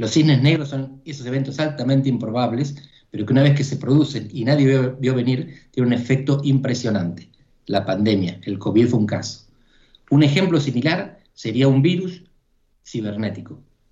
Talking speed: 165 wpm